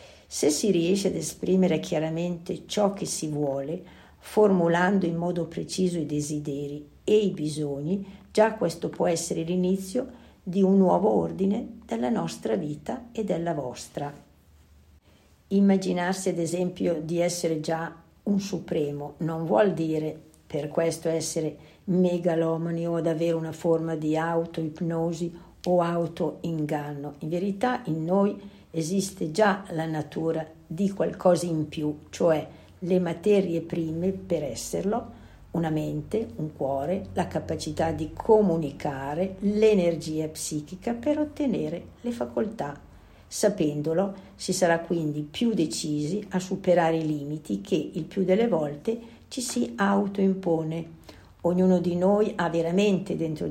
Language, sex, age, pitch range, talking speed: Italian, female, 60-79, 160-190 Hz, 130 wpm